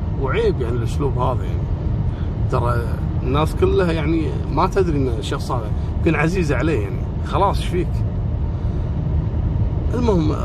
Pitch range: 80-125 Hz